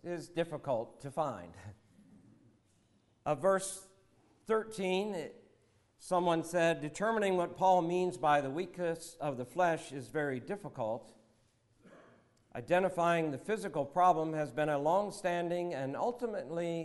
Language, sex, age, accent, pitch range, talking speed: English, male, 50-69, American, 135-180 Hz, 115 wpm